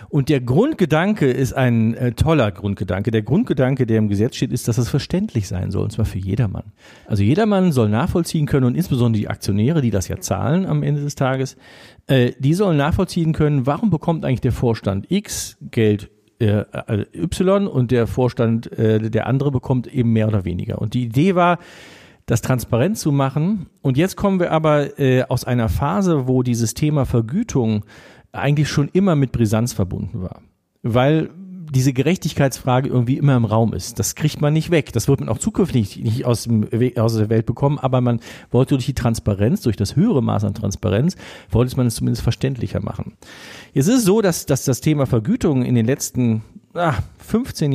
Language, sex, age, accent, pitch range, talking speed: German, male, 50-69, German, 115-150 Hz, 190 wpm